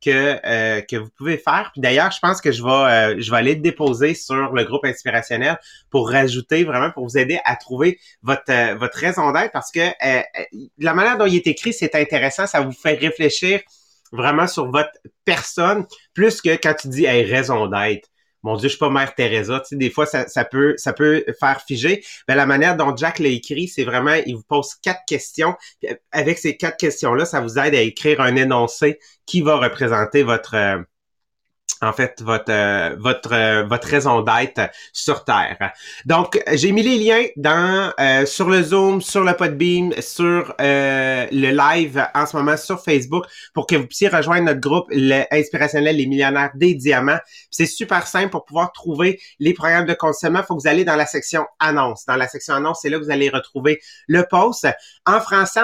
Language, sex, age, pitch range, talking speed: English, male, 30-49, 135-175 Hz, 205 wpm